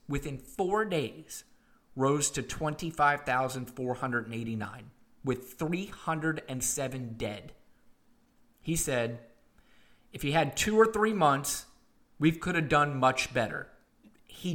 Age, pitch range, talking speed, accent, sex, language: 30-49, 140-185 Hz, 105 wpm, American, male, English